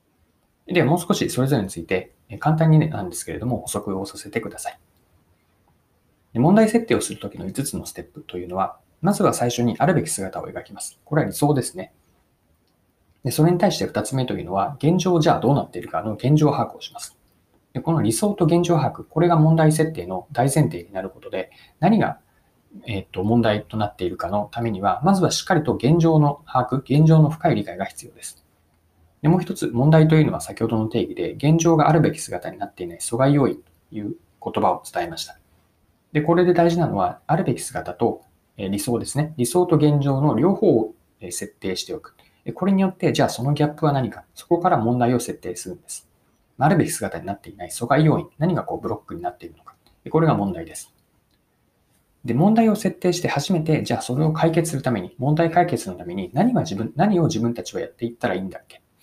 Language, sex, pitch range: Japanese, male, 105-165 Hz